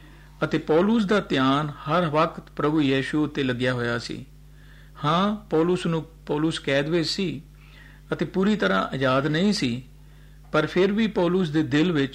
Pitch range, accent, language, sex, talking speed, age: 140-165 Hz, native, Hindi, male, 115 wpm, 50-69